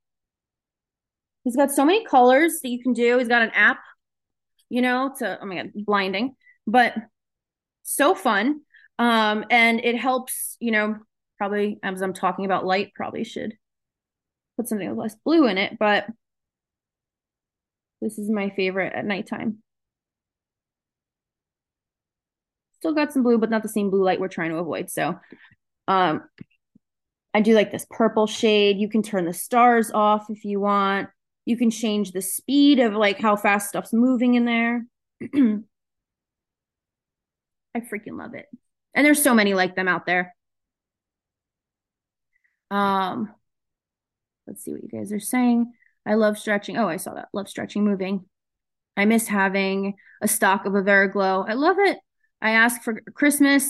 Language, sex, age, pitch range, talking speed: English, female, 20-39, 200-250 Hz, 155 wpm